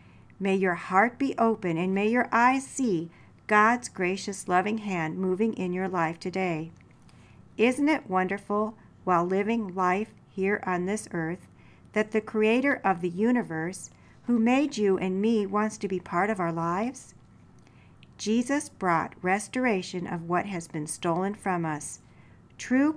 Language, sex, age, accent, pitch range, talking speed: English, female, 50-69, American, 170-220 Hz, 150 wpm